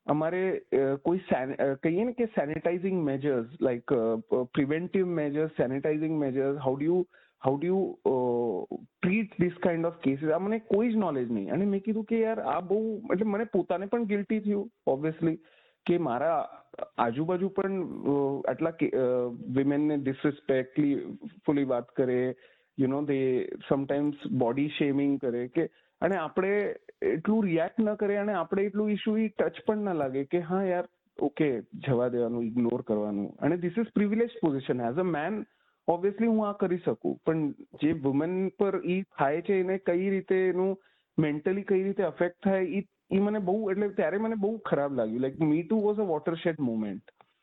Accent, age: native, 30-49